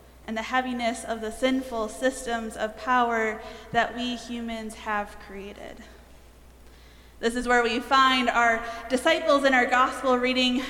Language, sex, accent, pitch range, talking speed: English, female, American, 235-280 Hz, 140 wpm